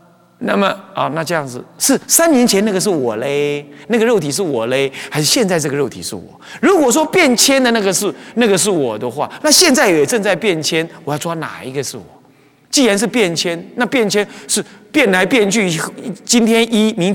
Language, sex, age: Chinese, male, 30-49